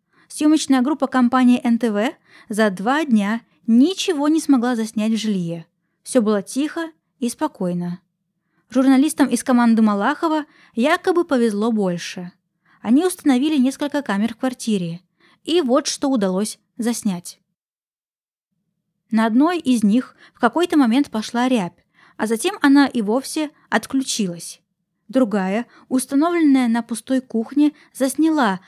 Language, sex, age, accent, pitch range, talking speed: Russian, female, 20-39, native, 205-280 Hz, 120 wpm